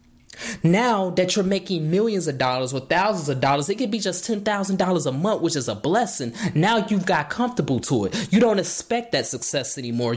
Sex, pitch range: male, 150-195 Hz